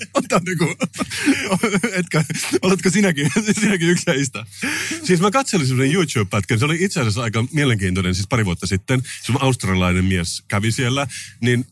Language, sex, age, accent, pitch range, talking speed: Finnish, male, 30-49, native, 100-125 Hz, 150 wpm